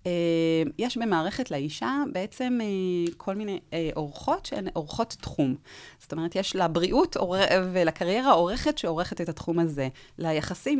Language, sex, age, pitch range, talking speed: Hebrew, female, 30-49, 160-215 Hz, 130 wpm